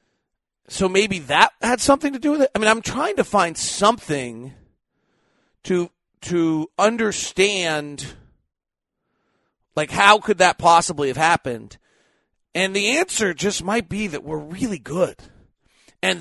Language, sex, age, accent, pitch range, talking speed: English, male, 40-59, American, 160-215 Hz, 135 wpm